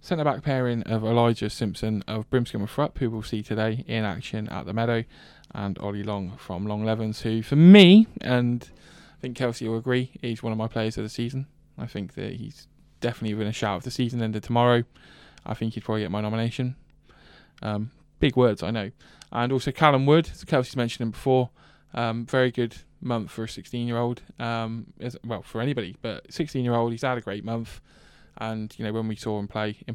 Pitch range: 110-125 Hz